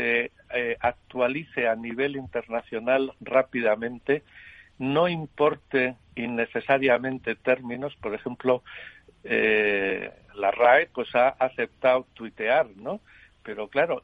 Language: Spanish